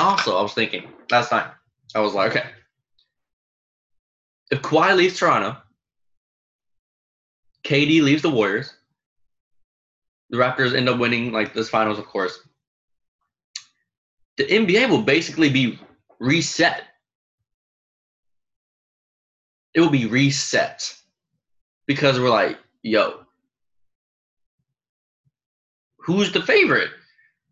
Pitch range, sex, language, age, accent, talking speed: 85-140 Hz, male, English, 20-39, American, 100 wpm